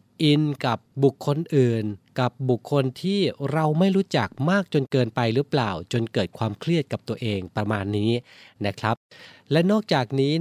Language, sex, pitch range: Thai, male, 110-145 Hz